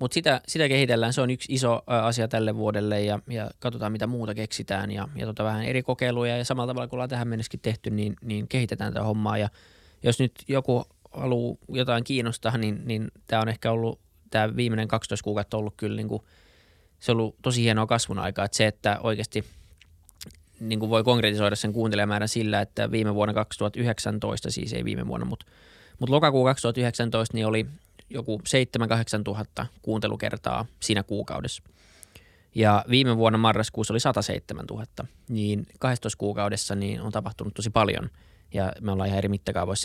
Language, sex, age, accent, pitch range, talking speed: Finnish, male, 20-39, native, 105-120 Hz, 170 wpm